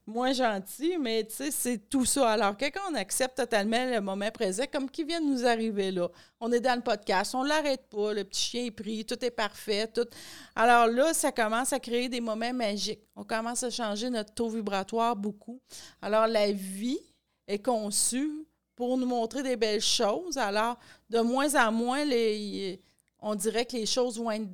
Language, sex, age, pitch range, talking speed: French, female, 40-59, 210-245 Hz, 200 wpm